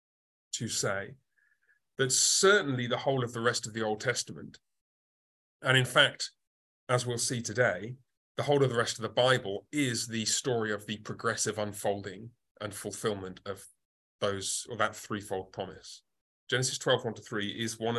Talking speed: 165 wpm